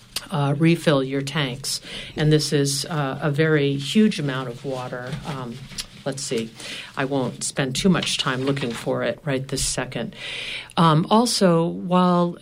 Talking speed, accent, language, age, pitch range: 155 wpm, American, English, 50-69, 140-160 Hz